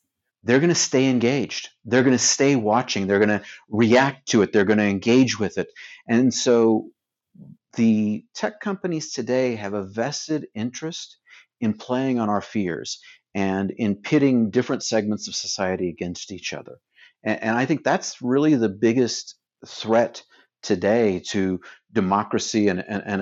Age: 50-69